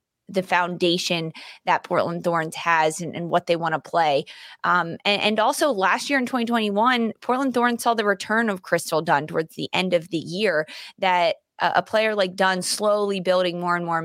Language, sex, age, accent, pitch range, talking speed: English, female, 20-39, American, 170-200 Hz, 190 wpm